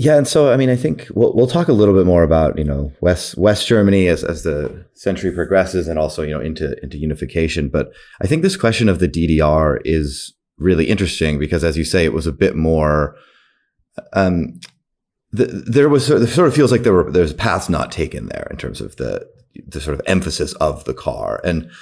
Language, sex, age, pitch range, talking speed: English, male, 30-49, 75-95 Hz, 230 wpm